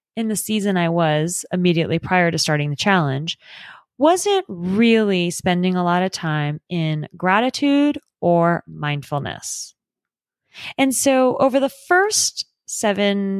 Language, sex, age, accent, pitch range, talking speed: English, female, 30-49, American, 170-235 Hz, 125 wpm